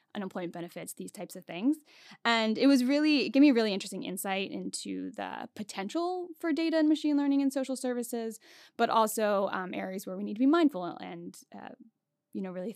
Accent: American